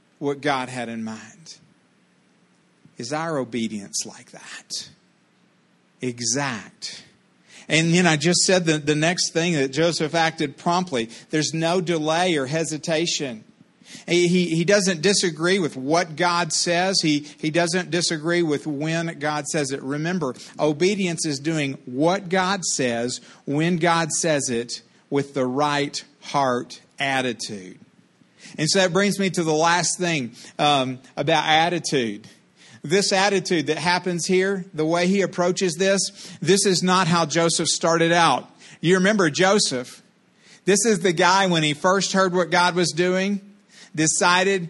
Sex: male